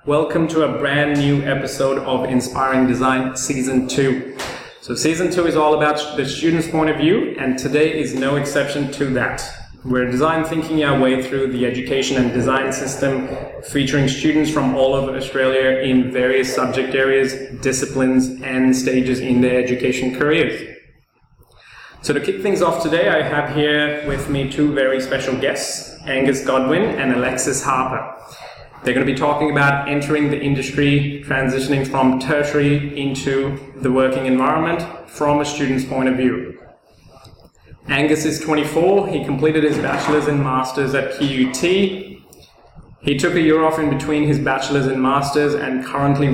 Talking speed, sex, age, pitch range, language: 160 wpm, male, 20-39, 130-150 Hz, English